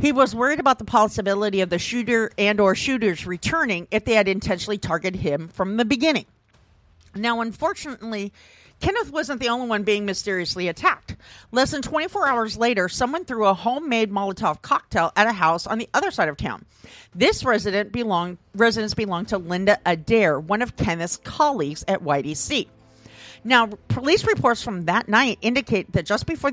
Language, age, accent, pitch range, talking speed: English, 40-59, American, 180-240 Hz, 170 wpm